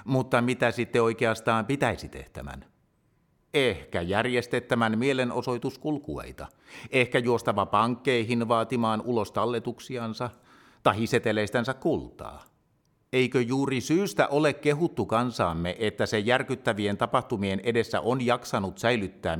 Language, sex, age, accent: Finnish, male, 50-69, native